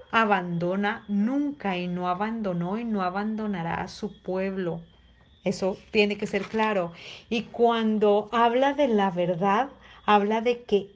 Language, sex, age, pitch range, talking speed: Spanish, female, 40-59, 190-245 Hz, 135 wpm